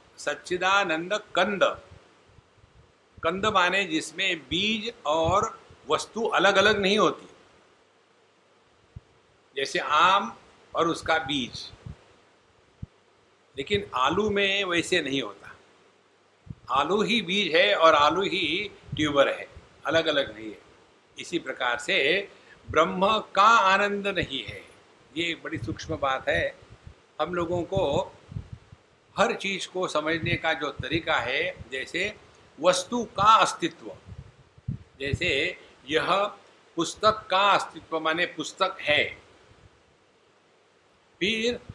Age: 60-79